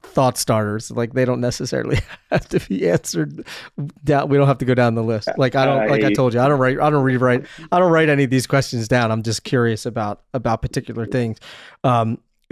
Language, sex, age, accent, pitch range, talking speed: English, male, 30-49, American, 120-140 Hz, 230 wpm